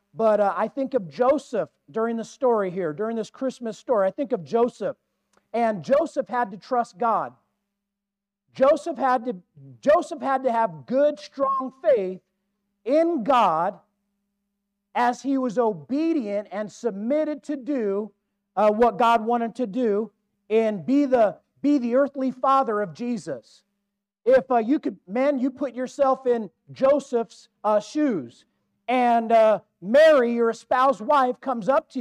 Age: 40-59